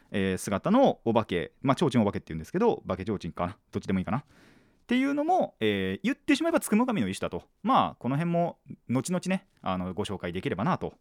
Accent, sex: native, male